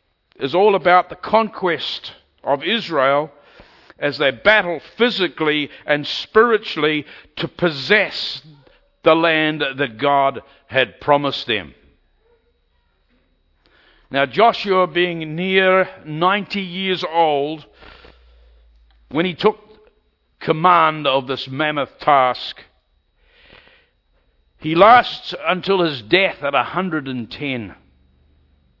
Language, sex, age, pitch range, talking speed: English, male, 60-79, 135-195 Hz, 90 wpm